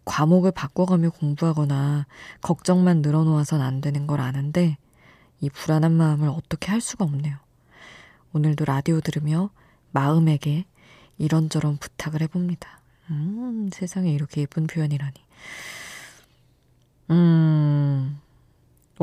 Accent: native